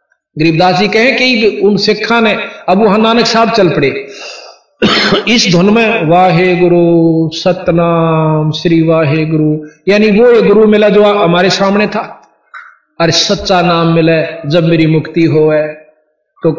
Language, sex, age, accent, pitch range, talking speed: Hindi, male, 50-69, native, 155-195 Hz, 140 wpm